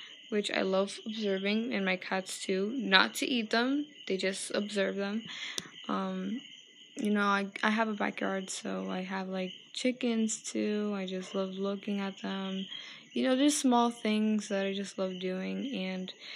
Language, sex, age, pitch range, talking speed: English, female, 10-29, 190-225 Hz, 170 wpm